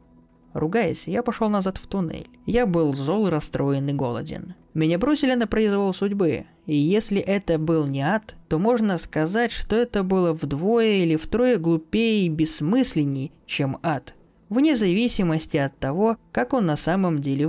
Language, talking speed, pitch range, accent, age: Russian, 160 wpm, 155-215 Hz, native, 20-39